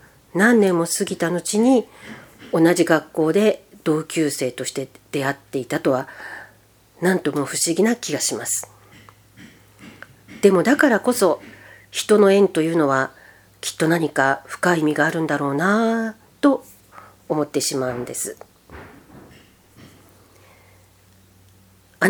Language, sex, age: Japanese, female, 40-59